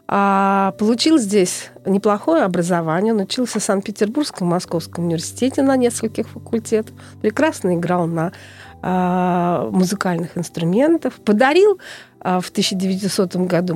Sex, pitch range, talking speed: female, 175-250 Hz, 110 wpm